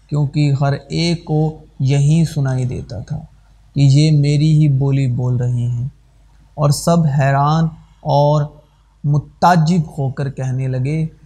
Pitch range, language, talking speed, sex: 140-160 Hz, Urdu, 135 wpm, male